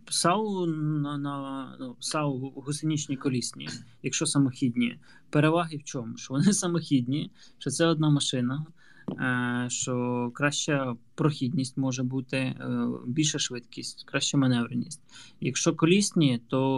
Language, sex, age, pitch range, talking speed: Ukrainian, male, 20-39, 125-150 Hz, 105 wpm